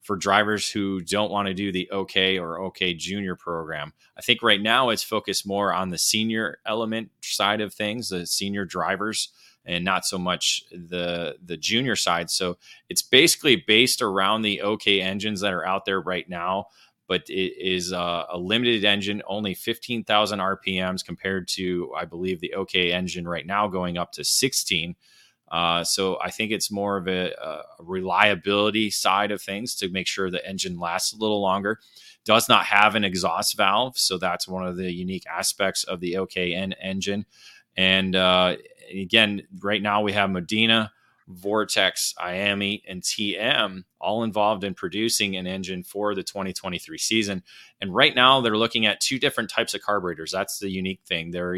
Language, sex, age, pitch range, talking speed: English, male, 20-39, 90-105 Hz, 180 wpm